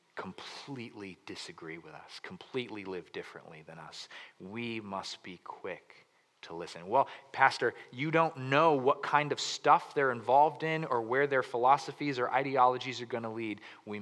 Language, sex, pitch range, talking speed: English, male, 105-140 Hz, 160 wpm